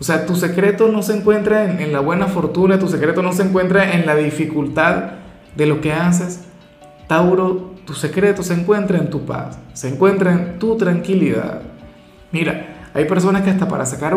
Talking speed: 180 wpm